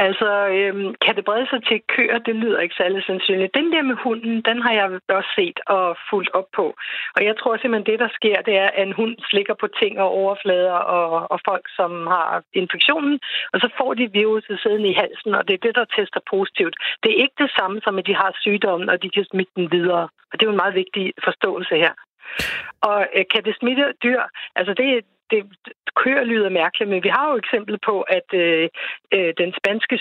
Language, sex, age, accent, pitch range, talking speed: Danish, female, 60-79, native, 185-220 Hz, 225 wpm